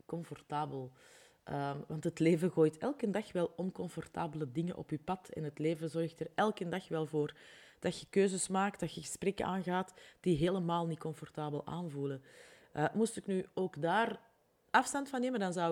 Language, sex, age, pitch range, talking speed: Dutch, female, 30-49, 155-195 Hz, 180 wpm